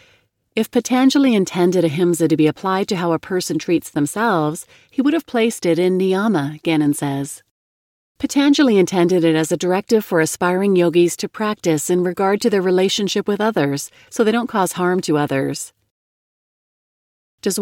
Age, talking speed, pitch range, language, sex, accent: 40-59, 165 wpm, 155-215 Hz, English, female, American